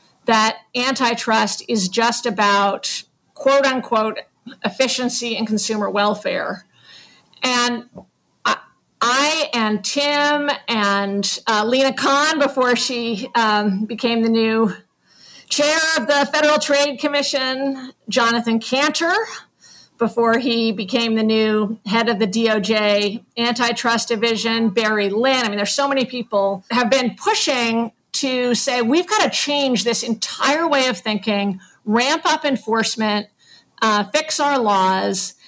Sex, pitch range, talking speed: female, 220-280 Hz, 125 wpm